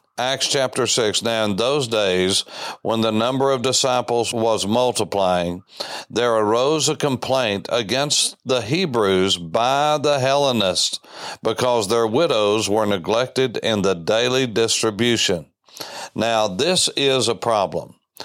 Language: English